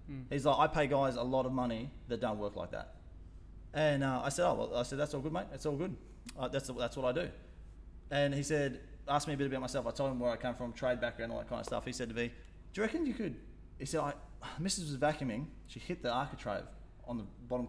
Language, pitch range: English, 110-140 Hz